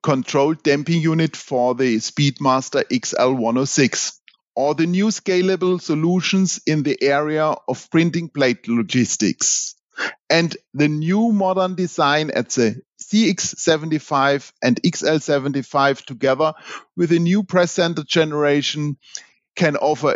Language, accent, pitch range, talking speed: English, German, 130-180 Hz, 115 wpm